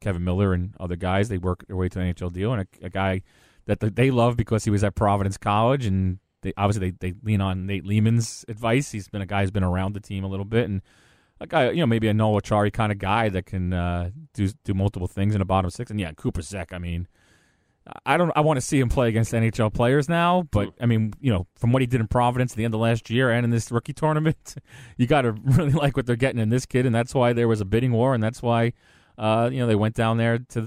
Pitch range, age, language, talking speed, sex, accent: 100-125 Hz, 30-49, English, 280 wpm, male, American